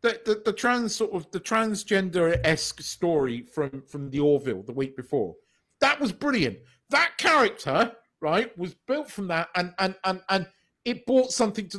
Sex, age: male, 40-59